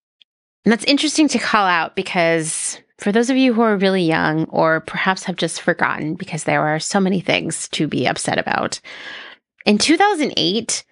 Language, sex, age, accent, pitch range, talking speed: English, female, 30-49, American, 170-240 Hz, 175 wpm